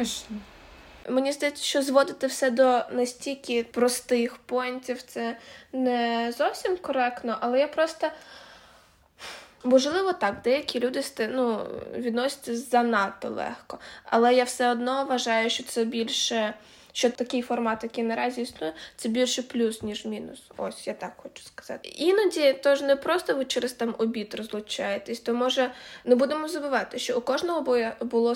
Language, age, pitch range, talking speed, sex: Ukrainian, 20-39, 230-260 Hz, 140 wpm, female